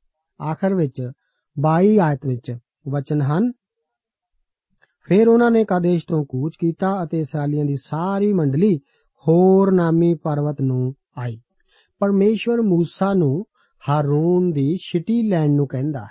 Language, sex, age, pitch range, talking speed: Punjabi, male, 50-69, 150-200 Hz, 125 wpm